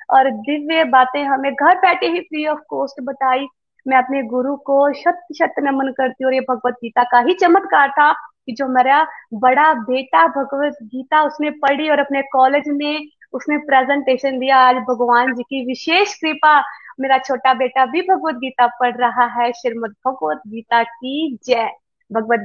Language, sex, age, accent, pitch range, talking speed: Hindi, female, 20-39, native, 250-295 Hz, 170 wpm